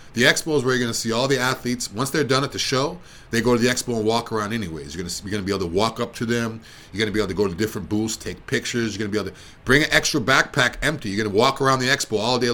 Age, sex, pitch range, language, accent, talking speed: 40-59, male, 105-135 Hz, English, American, 300 wpm